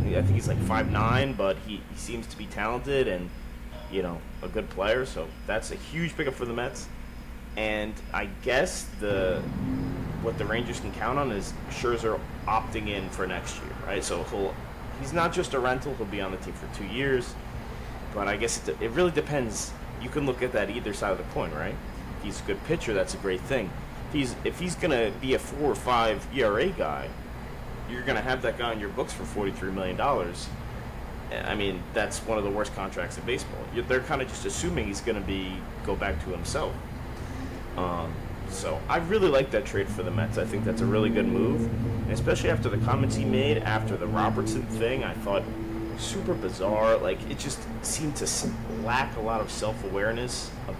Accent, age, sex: American, 30-49, male